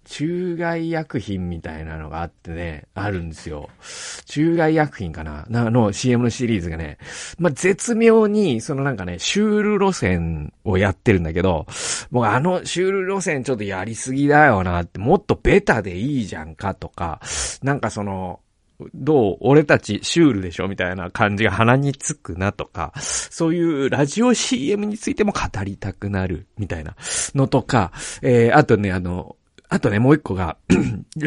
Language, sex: Japanese, male